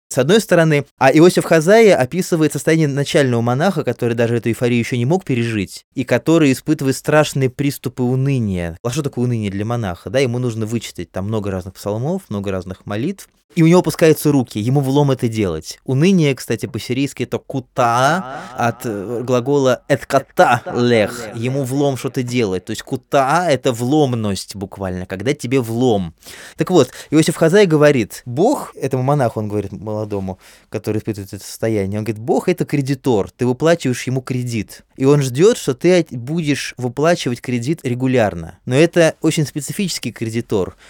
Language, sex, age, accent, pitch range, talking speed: Russian, male, 20-39, native, 115-150 Hz, 160 wpm